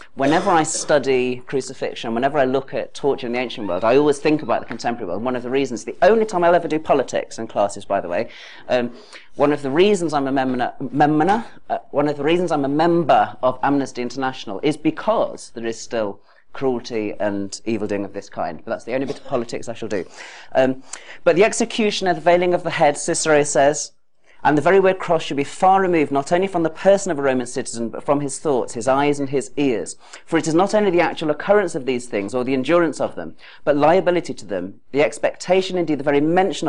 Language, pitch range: English, 130-175 Hz